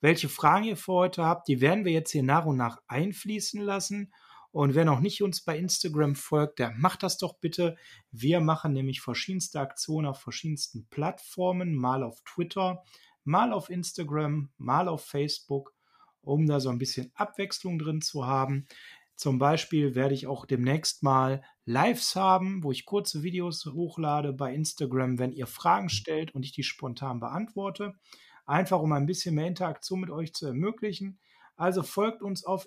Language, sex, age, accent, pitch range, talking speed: German, male, 30-49, German, 140-180 Hz, 175 wpm